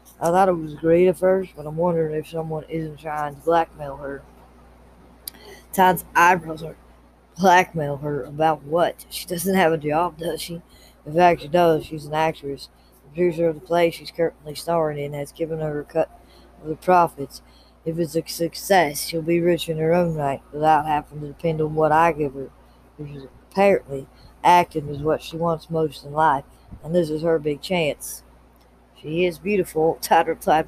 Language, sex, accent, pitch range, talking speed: English, female, American, 145-170 Hz, 190 wpm